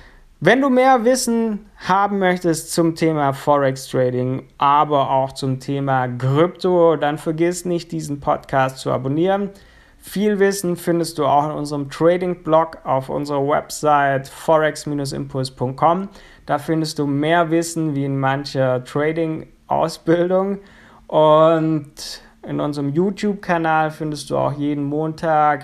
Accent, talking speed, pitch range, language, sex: German, 125 wpm, 130-165 Hz, German, male